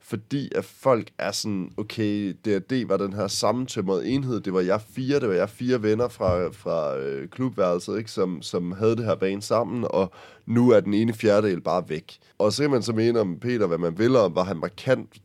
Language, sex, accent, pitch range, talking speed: Danish, male, native, 100-130 Hz, 215 wpm